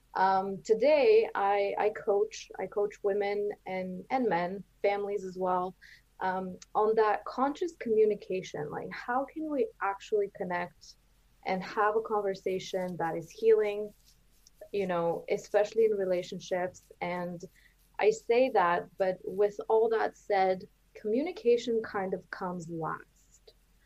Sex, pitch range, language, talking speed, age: female, 185-220 Hz, English, 130 wpm, 20-39